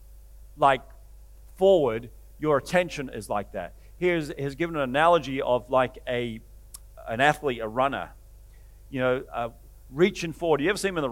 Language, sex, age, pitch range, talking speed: English, male, 40-59, 115-160 Hz, 175 wpm